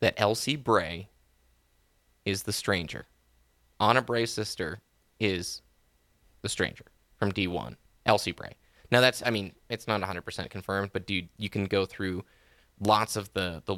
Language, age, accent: English, 20-39, American